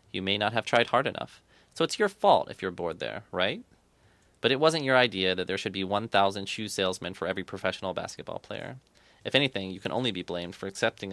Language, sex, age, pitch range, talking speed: English, male, 20-39, 100-120 Hz, 225 wpm